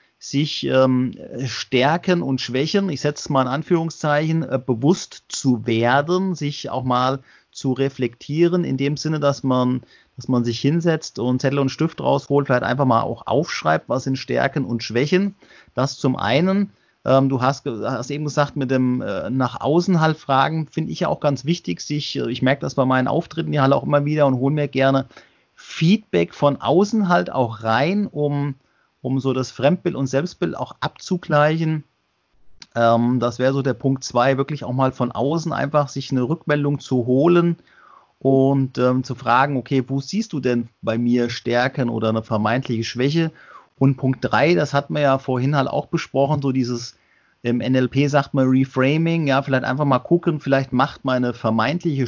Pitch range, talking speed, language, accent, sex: 125-150 Hz, 185 wpm, German, German, male